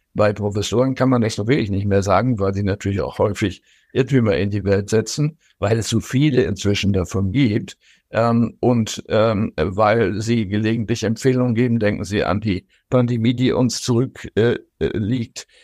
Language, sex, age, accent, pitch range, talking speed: German, male, 60-79, German, 105-130 Hz, 165 wpm